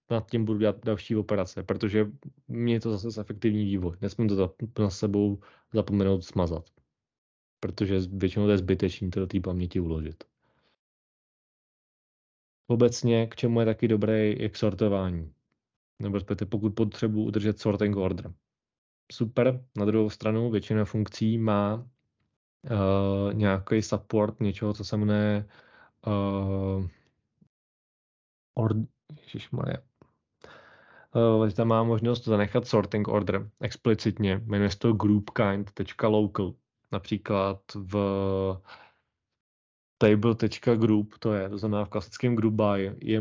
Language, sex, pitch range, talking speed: Czech, male, 100-110 Hz, 115 wpm